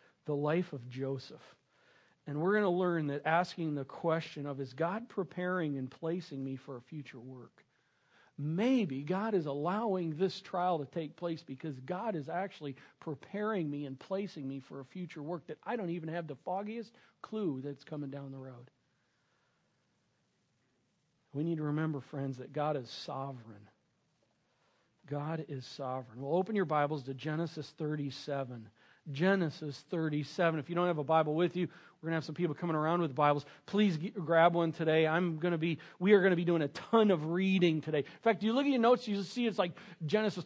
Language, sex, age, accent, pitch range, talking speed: English, male, 50-69, American, 145-200 Hz, 195 wpm